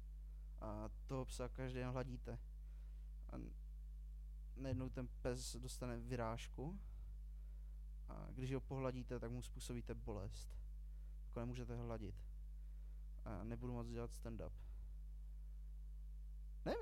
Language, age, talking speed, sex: Czech, 20-39, 100 wpm, male